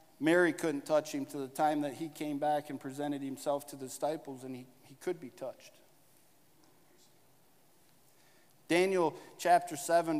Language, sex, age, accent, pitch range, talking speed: English, male, 50-69, American, 140-165 Hz, 155 wpm